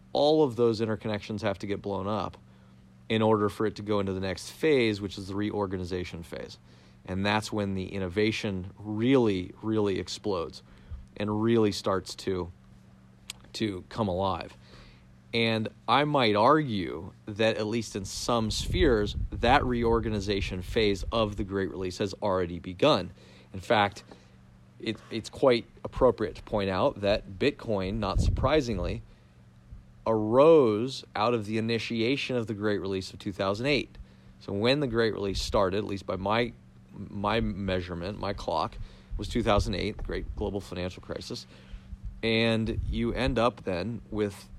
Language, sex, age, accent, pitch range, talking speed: English, male, 30-49, American, 95-110 Hz, 150 wpm